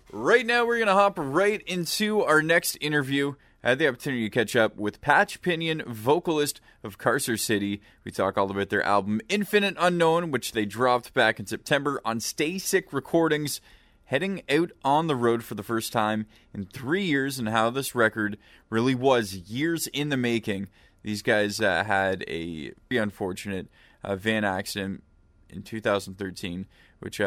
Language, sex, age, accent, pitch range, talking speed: English, male, 20-39, American, 100-140 Hz, 170 wpm